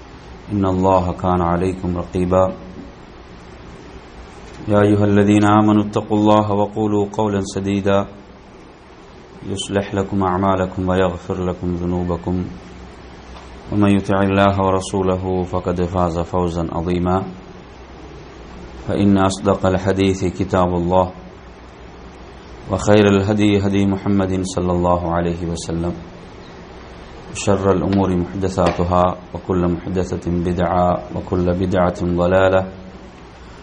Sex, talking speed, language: male, 90 wpm, English